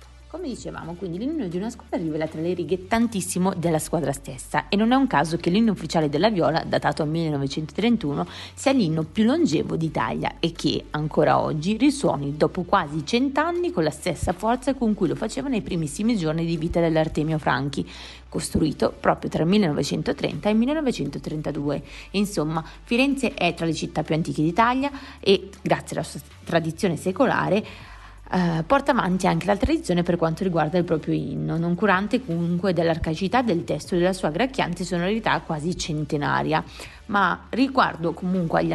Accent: native